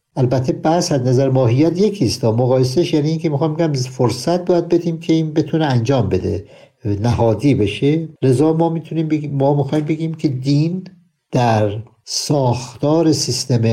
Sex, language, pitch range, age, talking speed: male, Persian, 120-155 Hz, 60-79, 135 wpm